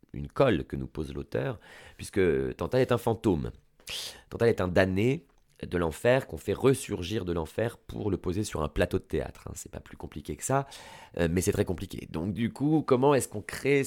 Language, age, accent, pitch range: French, 30-49, French, 75-110 Hz